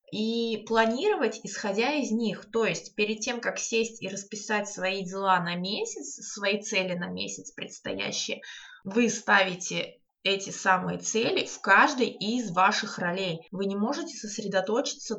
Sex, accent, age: female, native, 20-39